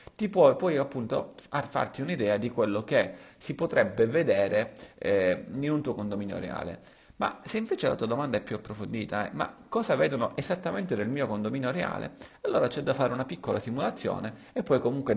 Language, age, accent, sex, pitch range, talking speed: Italian, 40-59, native, male, 105-135 Hz, 180 wpm